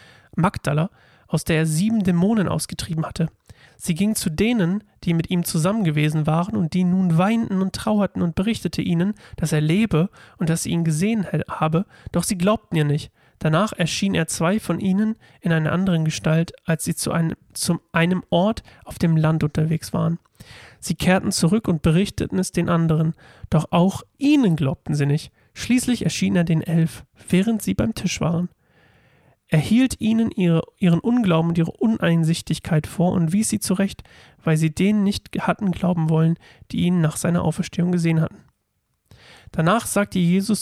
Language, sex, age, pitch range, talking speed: German, male, 30-49, 160-195 Hz, 170 wpm